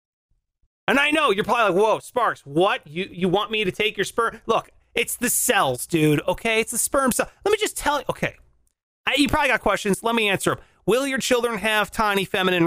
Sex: male